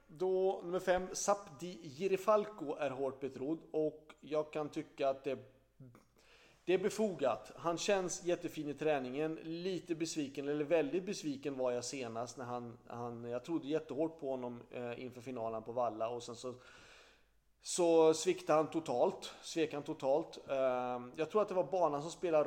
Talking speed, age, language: 160 wpm, 30-49, Swedish